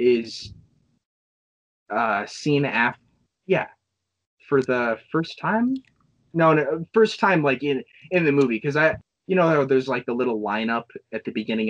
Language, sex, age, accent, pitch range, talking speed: English, male, 20-39, American, 110-180 Hz, 155 wpm